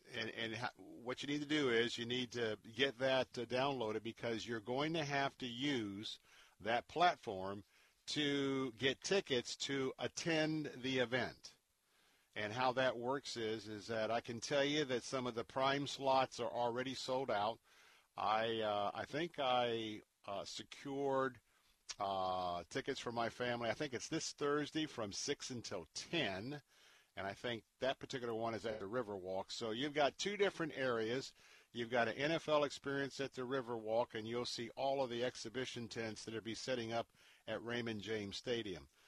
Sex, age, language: male, 50-69, English